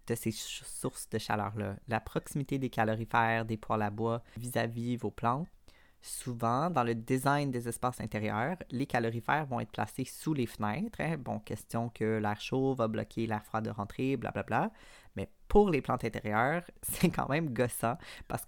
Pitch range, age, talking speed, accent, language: 115-140 Hz, 20-39, 180 wpm, Canadian, French